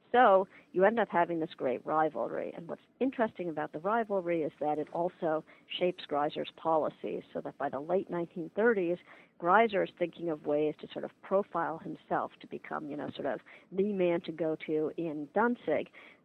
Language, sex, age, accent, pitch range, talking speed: English, female, 50-69, American, 160-195 Hz, 185 wpm